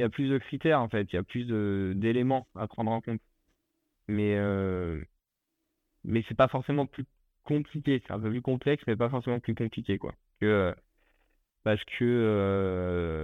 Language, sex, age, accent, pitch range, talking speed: French, male, 30-49, French, 100-120 Hz, 170 wpm